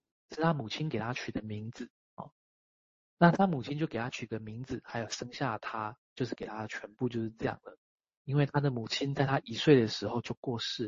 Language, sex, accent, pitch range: Chinese, male, native, 115-150 Hz